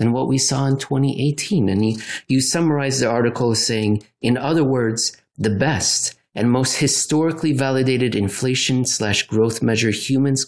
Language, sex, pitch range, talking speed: English, male, 110-140 Hz, 155 wpm